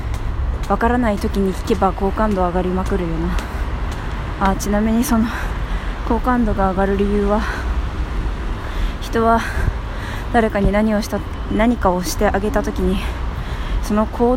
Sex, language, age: female, Japanese, 20-39